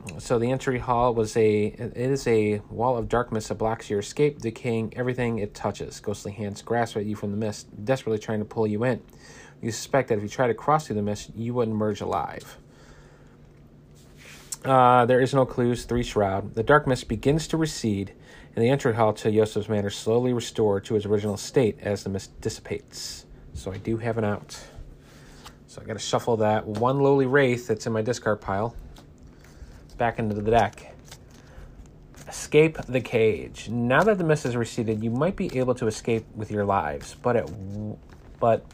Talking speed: 195 wpm